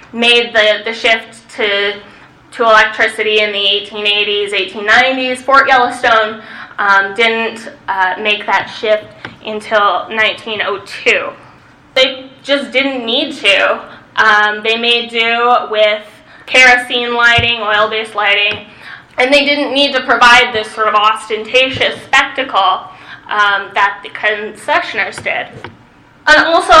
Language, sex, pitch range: English, female, 210-250 Hz